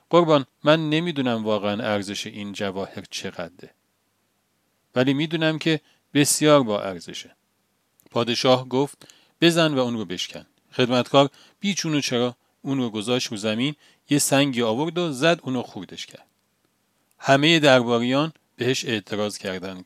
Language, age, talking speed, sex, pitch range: Persian, 40-59, 130 wpm, male, 110-145 Hz